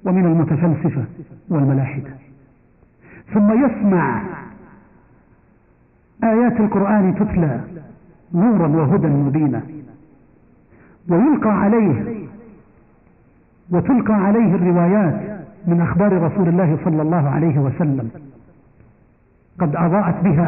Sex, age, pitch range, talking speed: male, 50-69, 145-180 Hz, 80 wpm